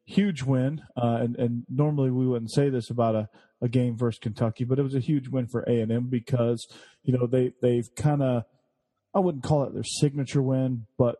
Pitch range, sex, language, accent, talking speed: 115-130 Hz, male, English, American, 210 wpm